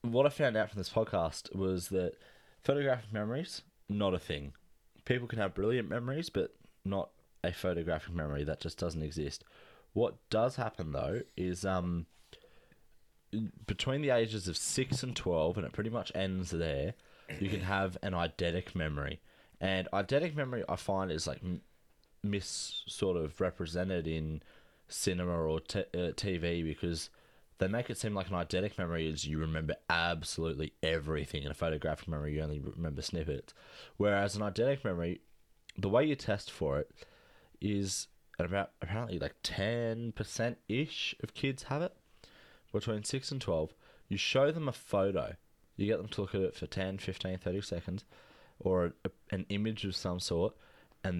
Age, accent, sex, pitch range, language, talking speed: 20-39, Australian, male, 85-105 Hz, English, 165 wpm